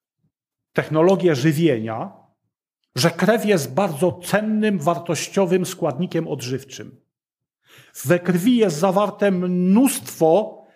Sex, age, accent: male, 40-59, native